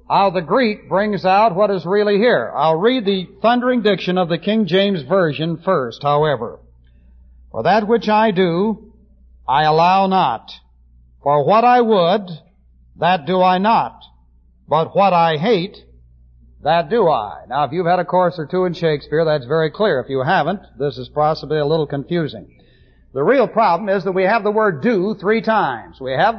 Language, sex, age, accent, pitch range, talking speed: English, male, 60-79, American, 150-215 Hz, 185 wpm